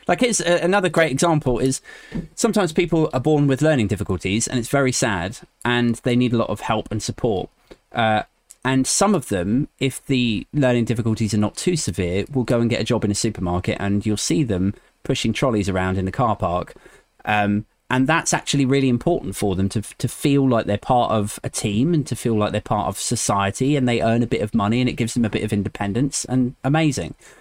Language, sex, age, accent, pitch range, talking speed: English, male, 30-49, British, 105-135 Hz, 220 wpm